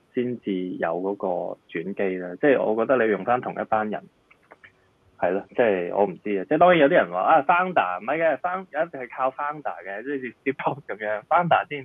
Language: Chinese